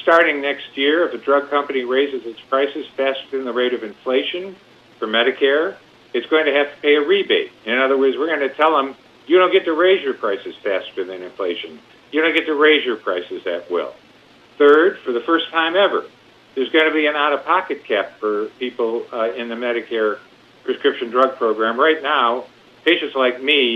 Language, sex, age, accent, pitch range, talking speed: English, male, 50-69, American, 130-175 Hz, 200 wpm